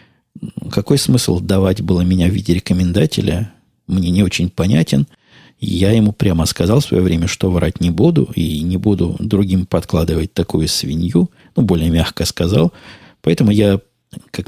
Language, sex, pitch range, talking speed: Russian, male, 85-95 Hz, 155 wpm